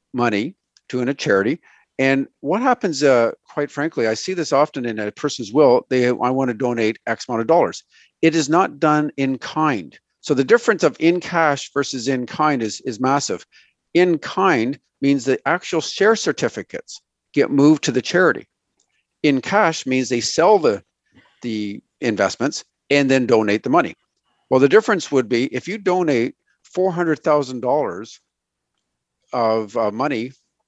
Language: English